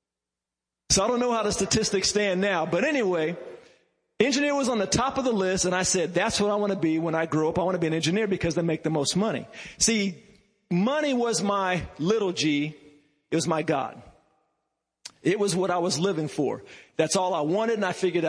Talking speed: 225 wpm